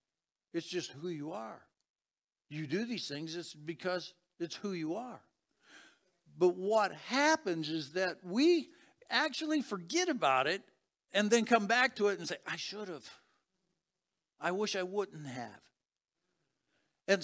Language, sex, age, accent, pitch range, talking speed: English, male, 60-79, American, 145-205 Hz, 145 wpm